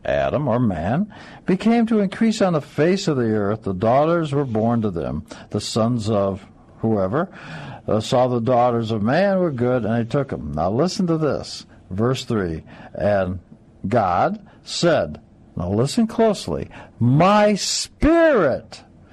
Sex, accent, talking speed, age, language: male, American, 145 wpm, 60-79, English